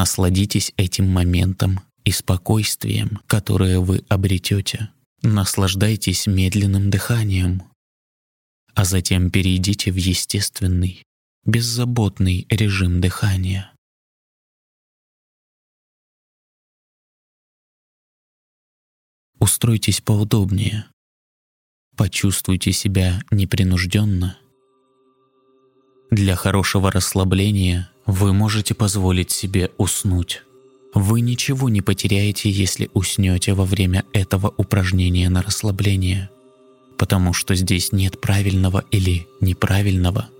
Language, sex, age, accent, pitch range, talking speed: Russian, male, 20-39, native, 95-120 Hz, 75 wpm